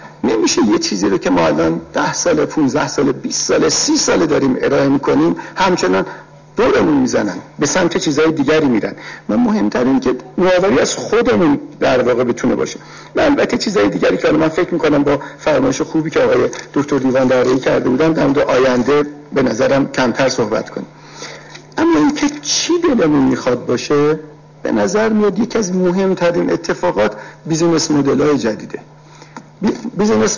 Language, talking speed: Persian, 160 wpm